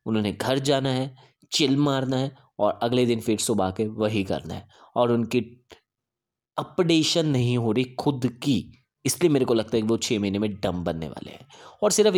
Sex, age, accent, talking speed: male, 20-39, native, 195 wpm